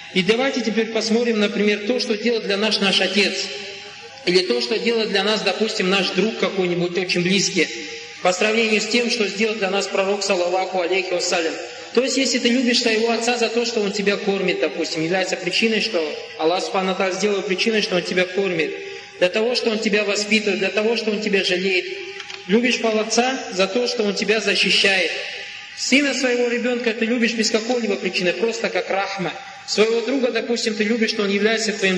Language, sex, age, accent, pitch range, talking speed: Russian, male, 20-39, native, 195-230 Hz, 190 wpm